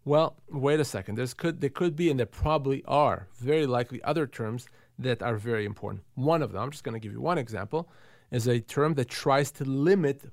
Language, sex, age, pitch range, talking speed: English, male, 40-59, 120-150 Hz, 225 wpm